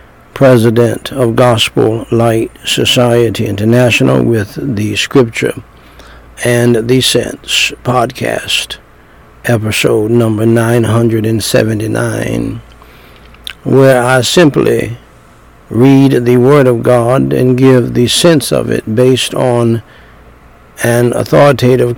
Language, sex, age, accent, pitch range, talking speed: English, male, 60-79, American, 100-125 Hz, 95 wpm